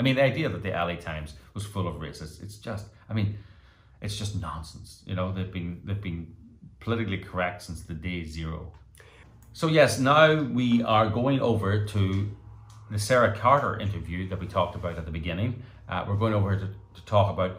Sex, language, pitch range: male, English, 95-110 Hz